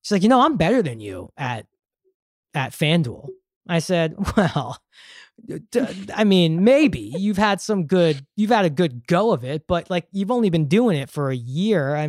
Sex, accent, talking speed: male, American, 195 wpm